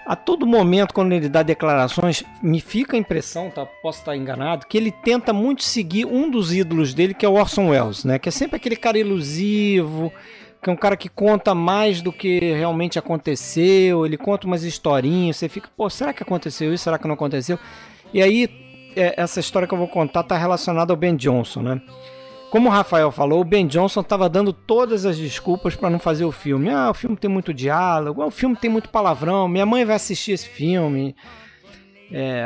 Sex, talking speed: male, 205 wpm